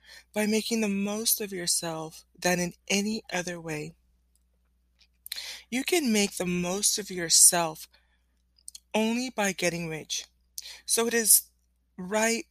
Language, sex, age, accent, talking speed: English, female, 20-39, American, 125 wpm